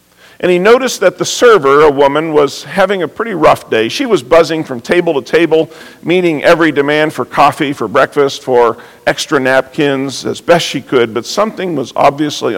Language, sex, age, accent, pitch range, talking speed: English, male, 50-69, American, 125-160 Hz, 185 wpm